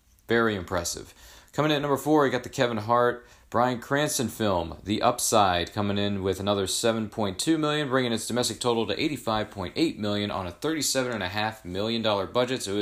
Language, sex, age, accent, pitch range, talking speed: English, male, 40-59, American, 100-125 Hz, 175 wpm